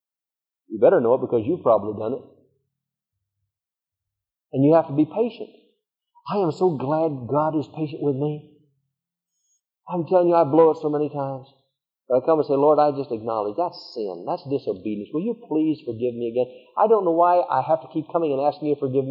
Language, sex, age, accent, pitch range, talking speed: English, male, 50-69, American, 125-170 Hz, 205 wpm